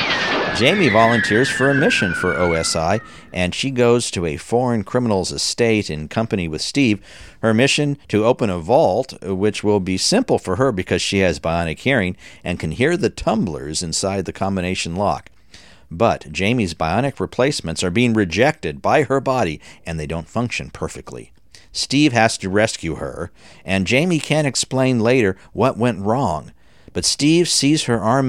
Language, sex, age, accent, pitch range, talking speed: English, male, 50-69, American, 90-125 Hz, 165 wpm